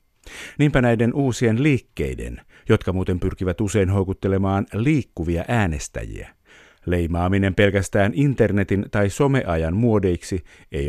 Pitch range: 90-110 Hz